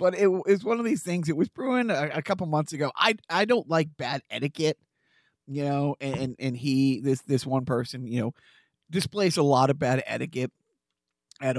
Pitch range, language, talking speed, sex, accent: 125-170 Hz, English, 200 wpm, male, American